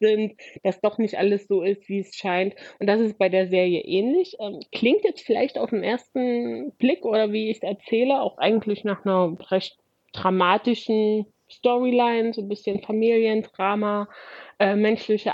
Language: German